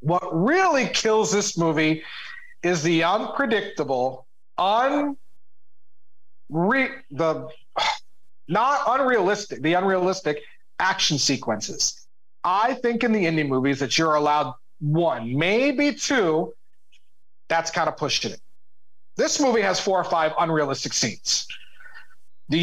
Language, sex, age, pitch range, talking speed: English, male, 40-59, 165-255 Hz, 110 wpm